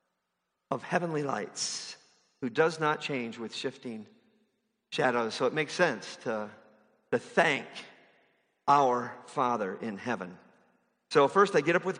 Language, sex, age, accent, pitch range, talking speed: English, male, 50-69, American, 135-190 Hz, 135 wpm